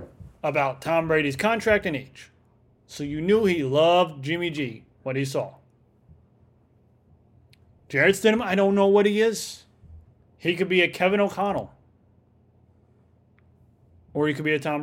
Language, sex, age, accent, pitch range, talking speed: English, male, 30-49, American, 125-170 Hz, 145 wpm